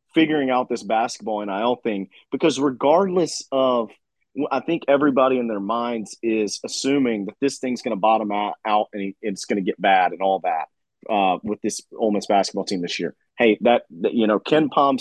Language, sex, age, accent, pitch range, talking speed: English, male, 30-49, American, 110-140 Hz, 195 wpm